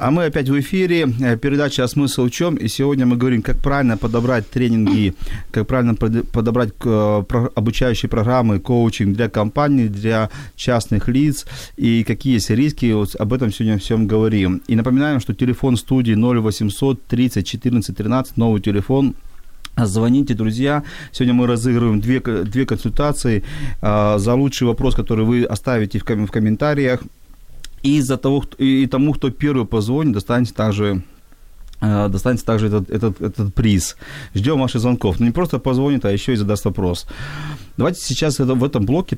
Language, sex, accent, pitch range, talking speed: Ukrainian, male, native, 105-135 Hz, 150 wpm